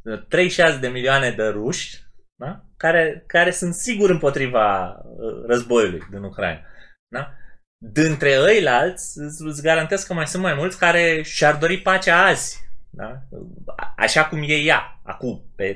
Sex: male